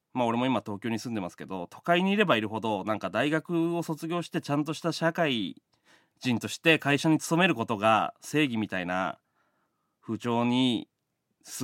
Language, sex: Japanese, male